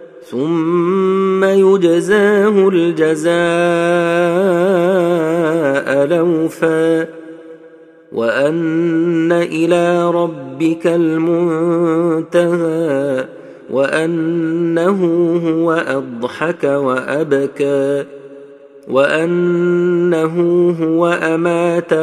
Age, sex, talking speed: 40-59, male, 40 wpm